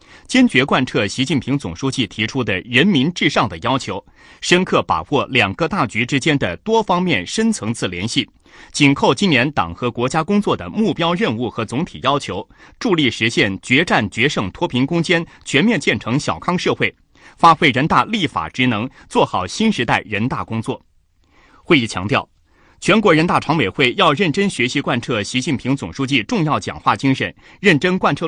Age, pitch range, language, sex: 30-49, 120-180 Hz, Chinese, male